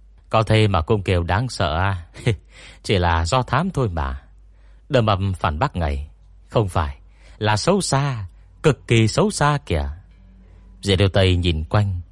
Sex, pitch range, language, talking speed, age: male, 85-115 Hz, Vietnamese, 165 wpm, 30-49